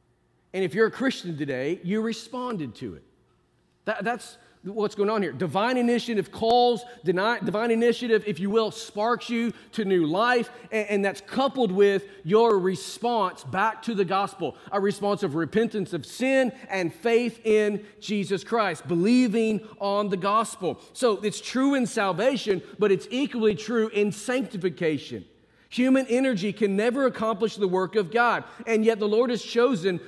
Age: 40-59